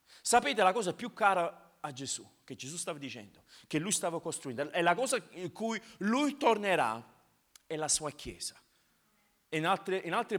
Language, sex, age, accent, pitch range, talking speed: Italian, male, 40-59, native, 135-205 Hz, 175 wpm